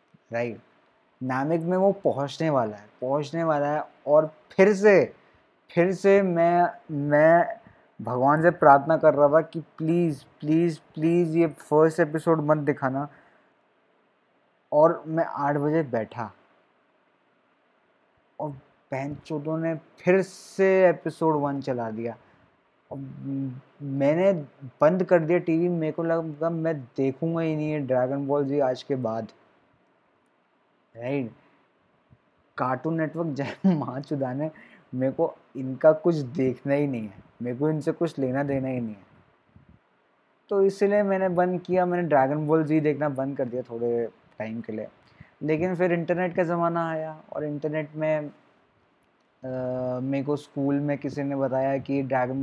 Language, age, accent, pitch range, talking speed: Hindi, 20-39, native, 130-165 Hz, 140 wpm